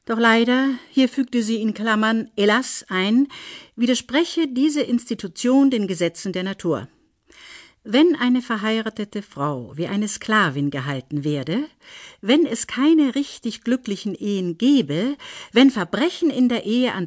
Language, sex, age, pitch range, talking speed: German, female, 50-69, 190-255 Hz, 135 wpm